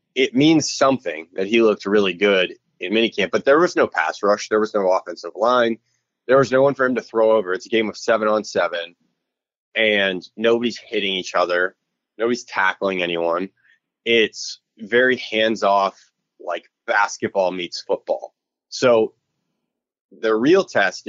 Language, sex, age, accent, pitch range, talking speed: English, male, 20-39, American, 100-120 Hz, 160 wpm